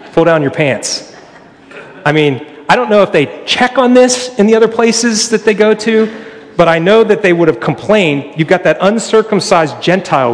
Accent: American